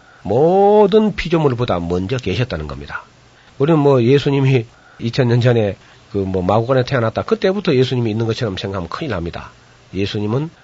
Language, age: Korean, 40-59